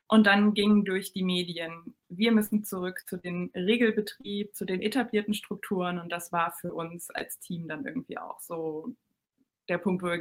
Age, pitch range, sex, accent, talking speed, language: 20-39, 180-235 Hz, female, German, 180 wpm, German